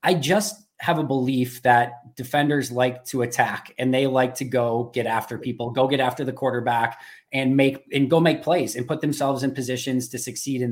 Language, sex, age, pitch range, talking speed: English, male, 20-39, 130-165 Hz, 205 wpm